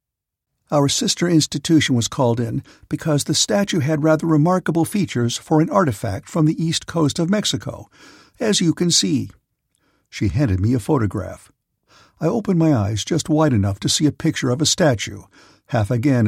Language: English